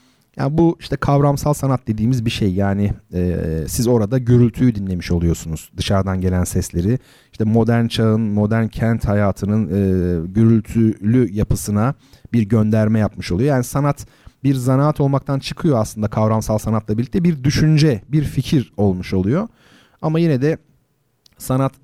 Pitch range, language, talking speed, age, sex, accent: 105-135 Hz, Turkish, 140 wpm, 40-59, male, native